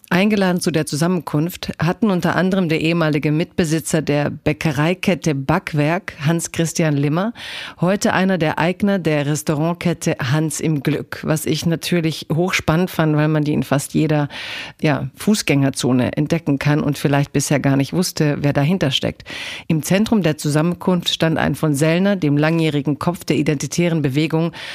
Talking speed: 150 wpm